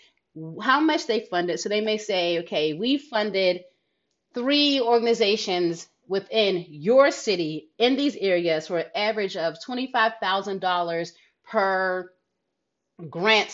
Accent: American